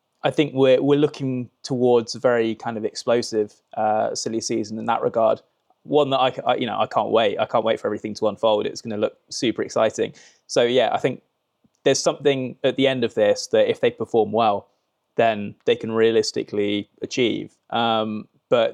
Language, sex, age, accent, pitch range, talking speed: English, male, 20-39, British, 105-130 Hz, 200 wpm